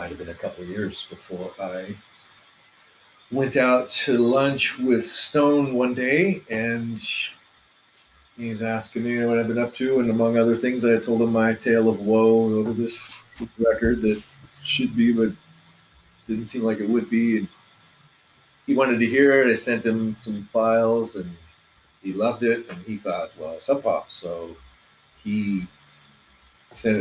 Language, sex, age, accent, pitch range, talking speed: English, male, 40-59, American, 95-115 Hz, 165 wpm